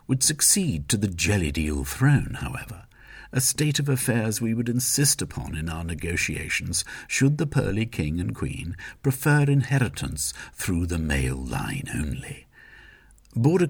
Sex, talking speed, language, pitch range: male, 140 wpm, English, 90-140 Hz